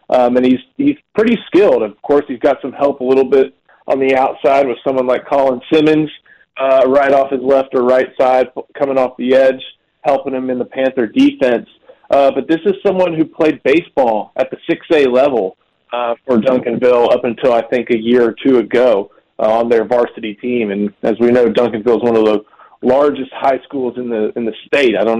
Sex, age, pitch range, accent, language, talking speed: male, 40-59, 120-140 Hz, American, English, 210 wpm